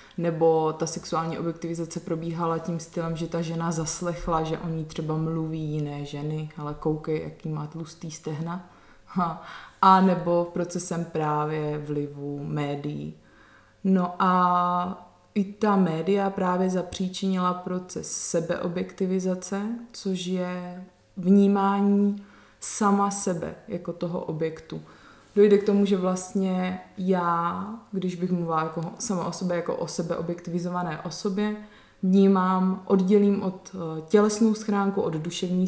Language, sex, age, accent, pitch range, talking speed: Czech, female, 20-39, native, 160-190 Hz, 120 wpm